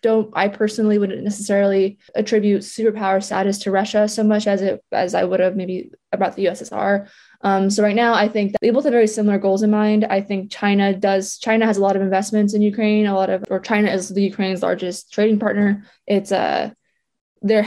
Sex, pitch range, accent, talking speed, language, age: female, 195-220 Hz, American, 215 wpm, English, 20-39